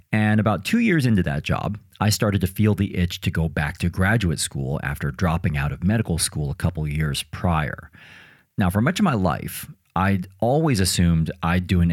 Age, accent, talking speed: 40-59, American, 205 wpm